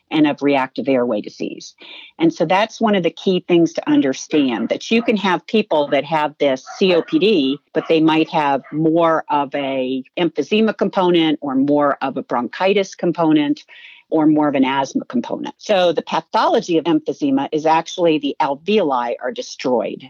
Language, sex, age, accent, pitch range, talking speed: English, female, 50-69, American, 150-235 Hz, 165 wpm